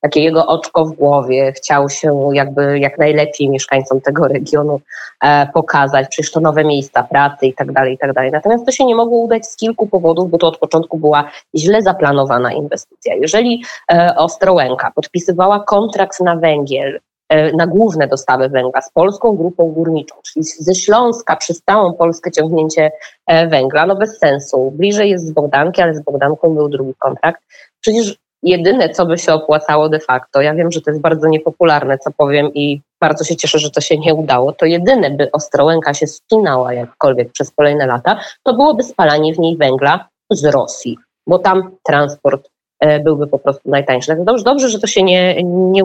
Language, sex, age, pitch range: Polish, female, 20-39, 145-180 Hz